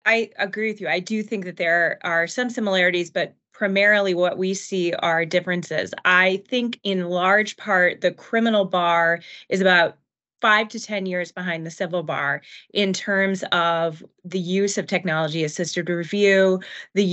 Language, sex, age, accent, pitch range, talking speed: English, female, 20-39, American, 175-200 Hz, 160 wpm